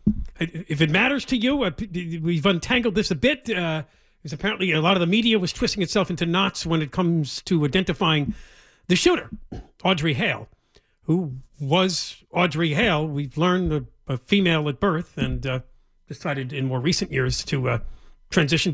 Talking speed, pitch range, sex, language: 170 wpm, 145-205 Hz, male, English